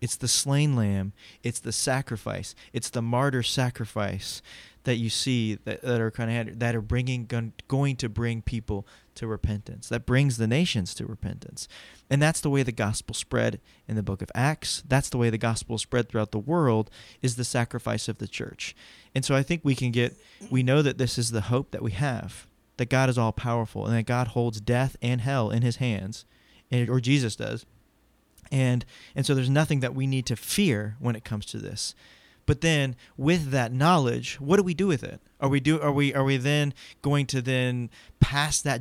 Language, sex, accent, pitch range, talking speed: English, male, American, 115-135 Hz, 210 wpm